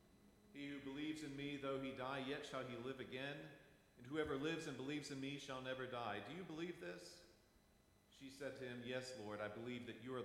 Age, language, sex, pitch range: 40-59, English, male, 110-135 Hz